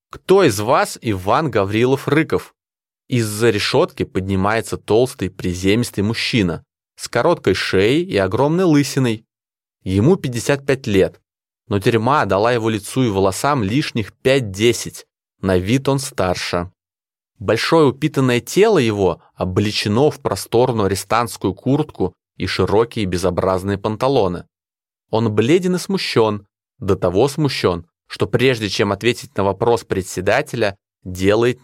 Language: Russian